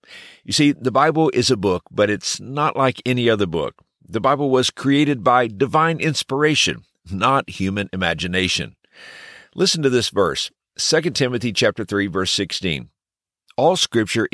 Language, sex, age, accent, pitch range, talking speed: English, male, 50-69, American, 90-130 Hz, 145 wpm